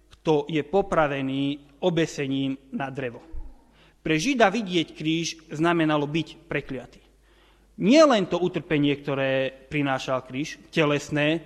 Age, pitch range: 30-49, 145-185 Hz